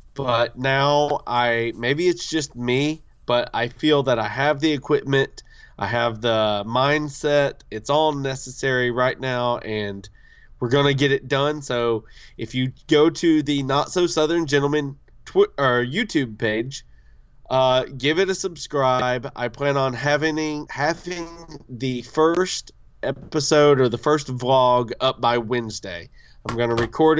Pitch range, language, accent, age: 120-145 Hz, English, American, 20-39